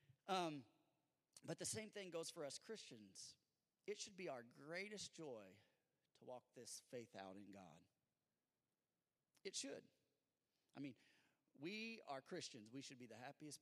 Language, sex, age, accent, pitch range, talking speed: English, male, 30-49, American, 115-155 Hz, 150 wpm